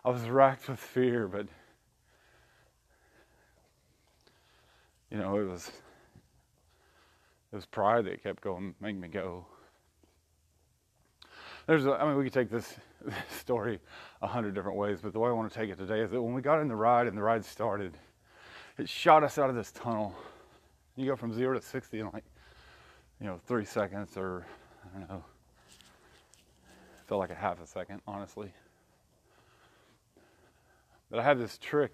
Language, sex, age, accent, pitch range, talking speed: English, male, 30-49, American, 85-120 Hz, 165 wpm